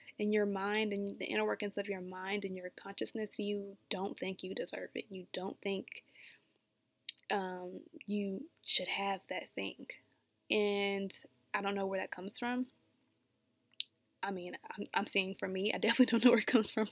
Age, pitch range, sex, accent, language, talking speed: 20-39, 195-245 Hz, female, American, English, 180 wpm